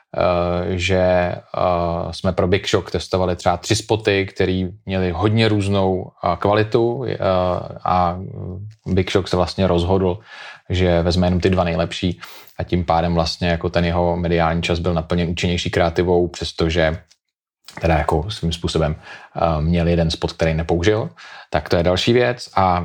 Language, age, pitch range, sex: Czech, 30-49, 90-100 Hz, male